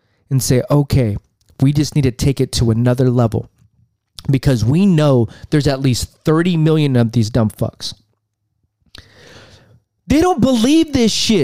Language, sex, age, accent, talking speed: English, male, 20-39, American, 150 wpm